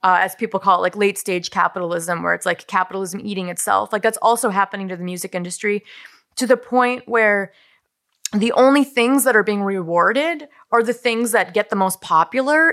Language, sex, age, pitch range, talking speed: English, female, 20-39, 180-230 Hz, 200 wpm